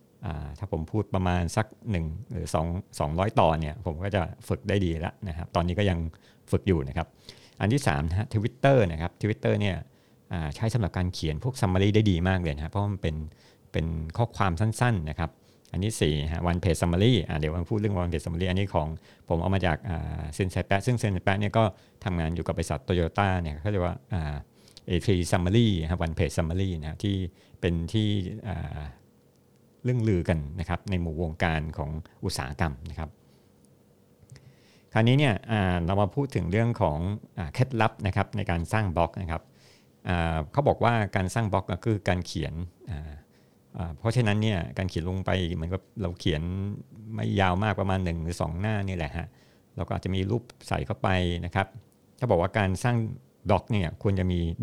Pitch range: 85-105 Hz